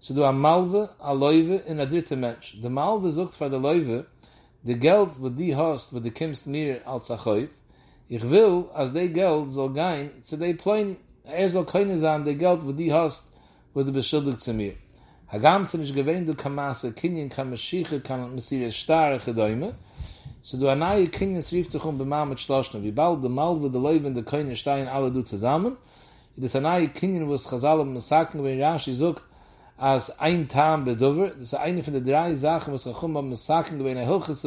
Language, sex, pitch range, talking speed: English, male, 130-160 Hz, 95 wpm